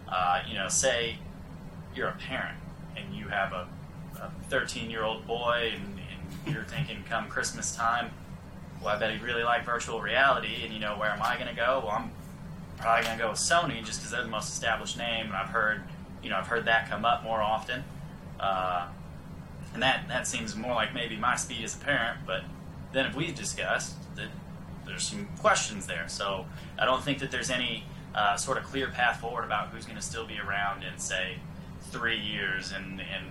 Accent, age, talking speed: American, 20-39, 205 wpm